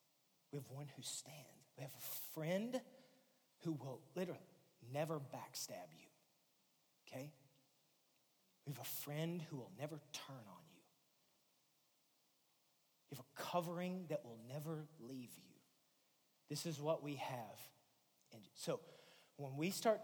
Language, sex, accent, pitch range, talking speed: English, male, American, 135-160 Hz, 130 wpm